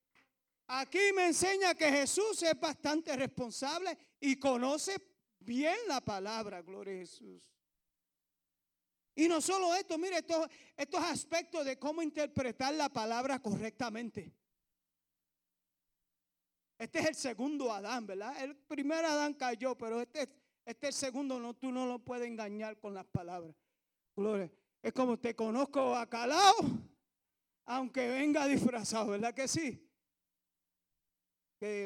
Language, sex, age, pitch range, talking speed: English, male, 40-59, 200-310 Hz, 125 wpm